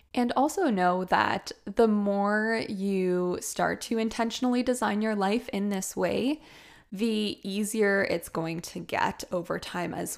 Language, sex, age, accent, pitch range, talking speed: English, female, 10-29, American, 185-230 Hz, 145 wpm